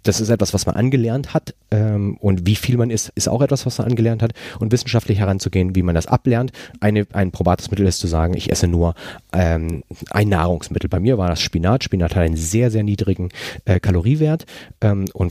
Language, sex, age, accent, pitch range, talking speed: German, male, 30-49, German, 90-115 Hz, 195 wpm